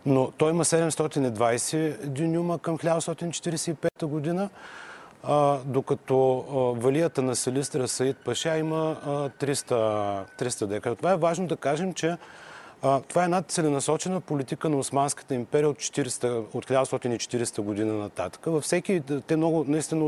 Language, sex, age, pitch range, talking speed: Bulgarian, male, 30-49, 120-150 Hz, 125 wpm